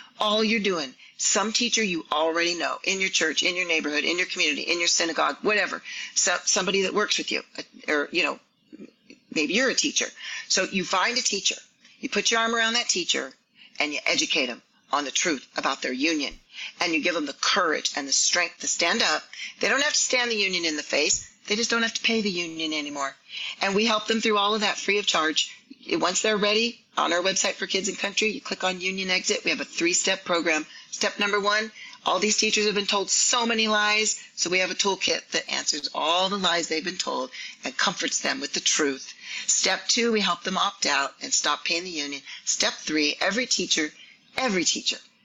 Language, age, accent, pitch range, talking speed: English, 40-59, American, 165-215 Hz, 220 wpm